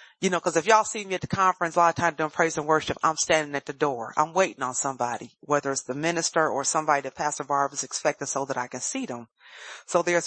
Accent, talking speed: American, 270 wpm